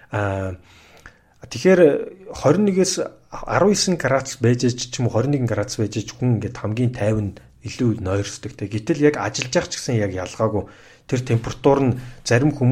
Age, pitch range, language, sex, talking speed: 40-59, 110-140 Hz, English, male, 110 wpm